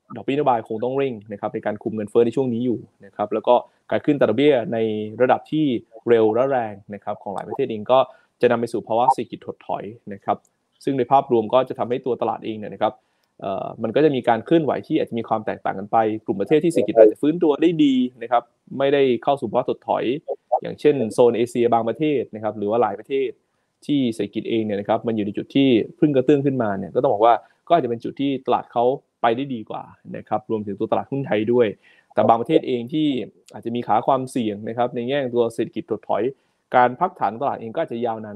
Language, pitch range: Thai, 110-140 Hz